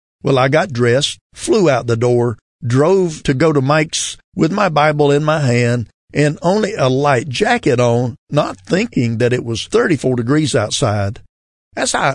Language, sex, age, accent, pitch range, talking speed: English, male, 50-69, American, 120-150 Hz, 175 wpm